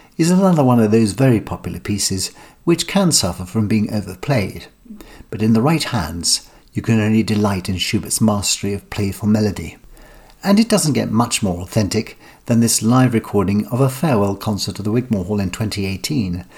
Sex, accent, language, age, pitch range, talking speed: male, British, English, 60-79, 100-130 Hz, 180 wpm